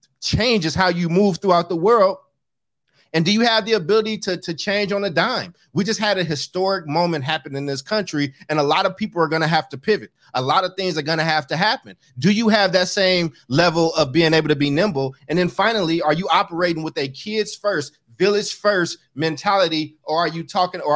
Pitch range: 145-185 Hz